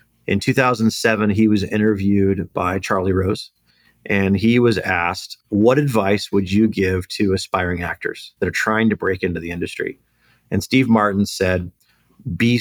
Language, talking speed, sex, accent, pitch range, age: English, 155 wpm, male, American, 95-115 Hz, 40-59